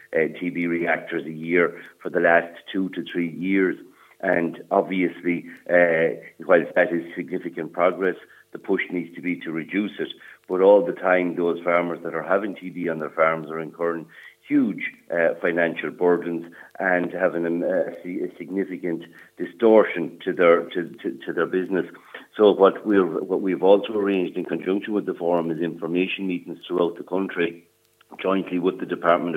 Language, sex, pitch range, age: English, male, 85-95 Hz, 50-69